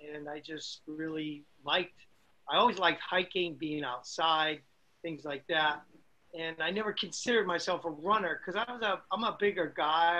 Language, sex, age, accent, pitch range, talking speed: English, male, 40-59, American, 150-180 Hz, 165 wpm